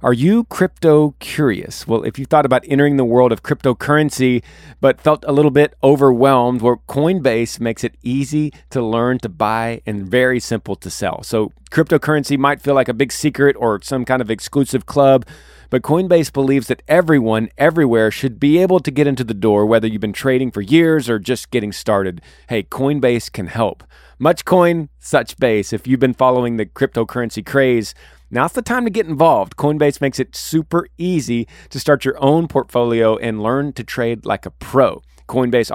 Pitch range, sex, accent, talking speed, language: 115-145 Hz, male, American, 185 wpm, English